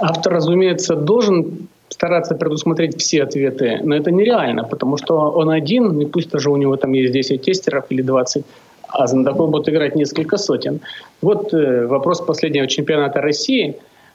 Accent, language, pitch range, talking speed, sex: native, Russian, 150-200 Hz, 160 wpm, male